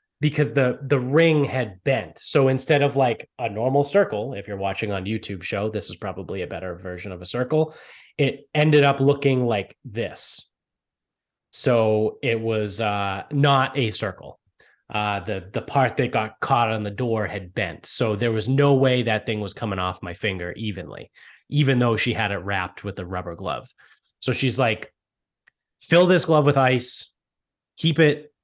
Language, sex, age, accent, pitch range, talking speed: English, male, 20-39, American, 100-130 Hz, 180 wpm